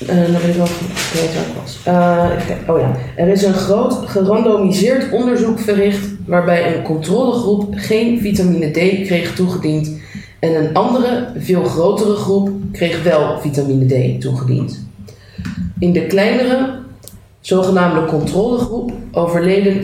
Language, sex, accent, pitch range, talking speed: Dutch, female, Dutch, 150-200 Hz, 105 wpm